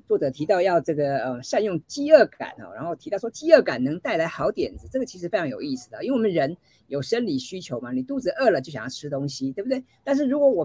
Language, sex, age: Chinese, female, 50-69